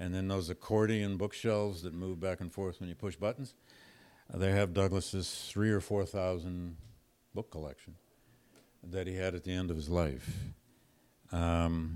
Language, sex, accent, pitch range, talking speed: English, male, American, 85-105 Hz, 165 wpm